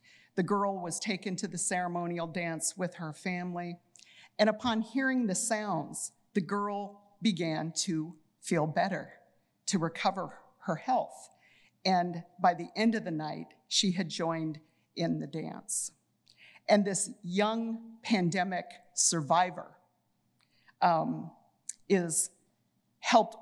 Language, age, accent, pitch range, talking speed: English, 50-69, American, 170-215 Hz, 120 wpm